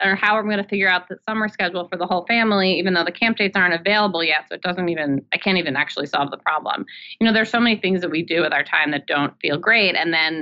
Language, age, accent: English, 30-49, American